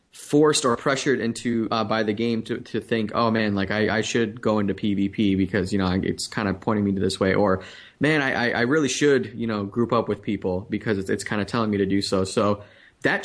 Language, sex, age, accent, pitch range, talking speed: English, male, 20-39, American, 105-135 Hz, 250 wpm